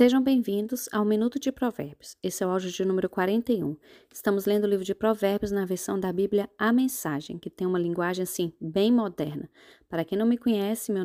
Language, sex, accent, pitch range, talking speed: Portuguese, female, Brazilian, 190-245 Hz, 205 wpm